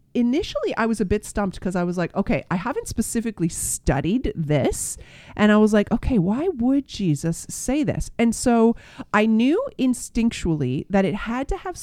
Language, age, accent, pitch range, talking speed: English, 30-49, American, 165-230 Hz, 185 wpm